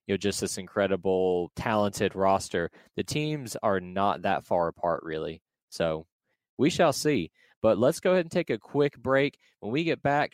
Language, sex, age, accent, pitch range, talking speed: English, male, 20-39, American, 100-125 Hz, 175 wpm